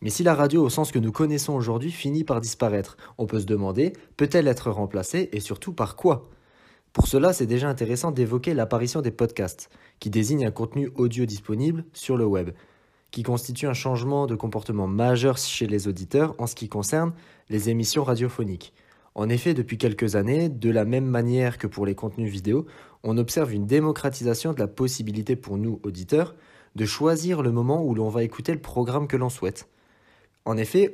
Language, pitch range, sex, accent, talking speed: French, 110-140 Hz, male, French, 190 wpm